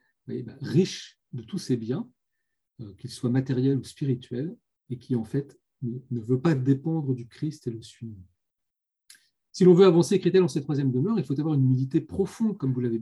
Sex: male